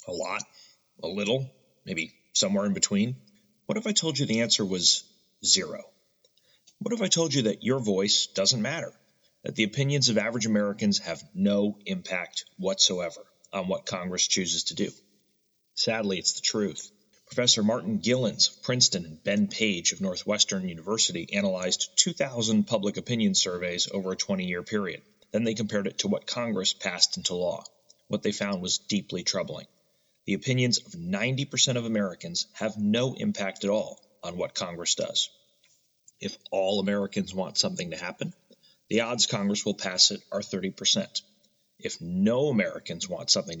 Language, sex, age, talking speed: English, male, 30-49, 160 wpm